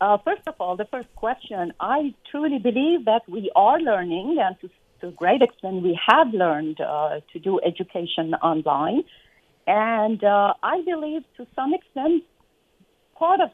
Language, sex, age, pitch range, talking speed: English, female, 50-69, 195-275 Hz, 160 wpm